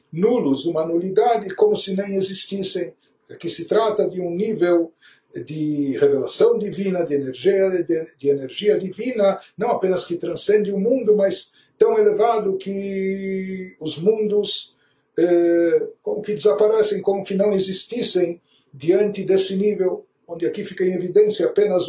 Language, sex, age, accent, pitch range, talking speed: Portuguese, male, 60-79, Brazilian, 155-215 Hz, 135 wpm